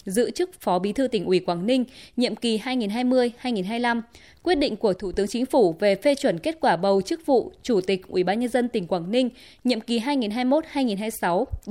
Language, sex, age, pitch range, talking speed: Vietnamese, female, 20-39, 205-255 Hz, 200 wpm